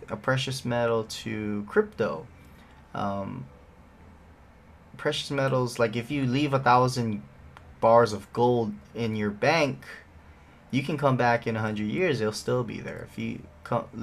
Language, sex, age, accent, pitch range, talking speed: English, male, 20-39, American, 95-135 Hz, 150 wpm